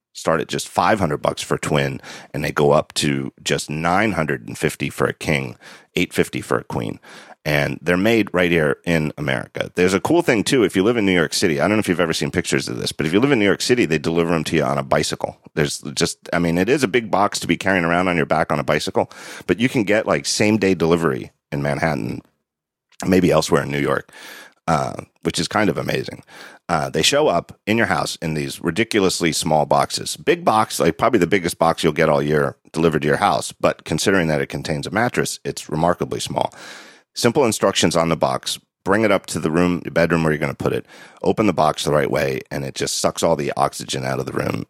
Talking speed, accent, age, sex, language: 240 wpm, American, 40-59, male, English